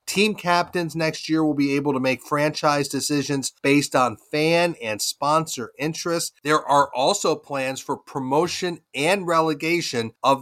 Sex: male